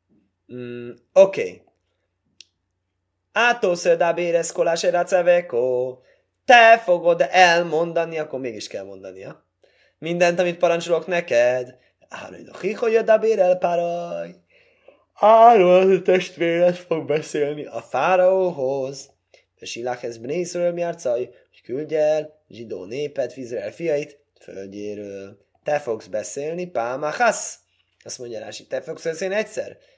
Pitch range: 145-185 Hz